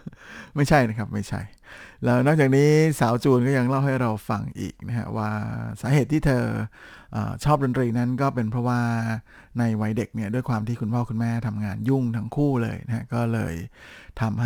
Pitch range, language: 110-125 Hz, Thai